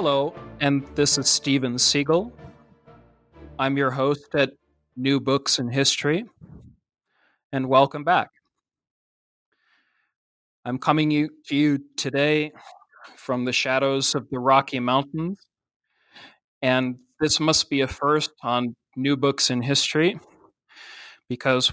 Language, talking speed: English, 115 wpm